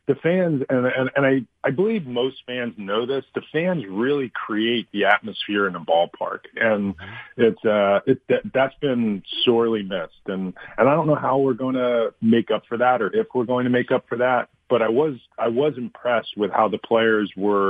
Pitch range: 100-125 Hz